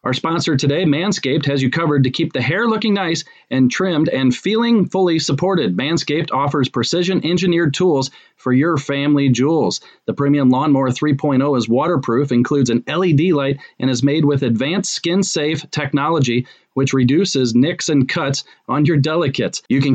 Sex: male